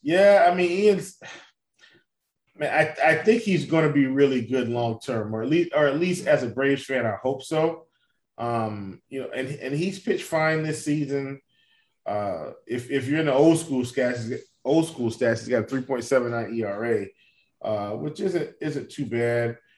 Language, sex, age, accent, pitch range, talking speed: English, male, 20-39, American, 130-165 Hz, 205 wpm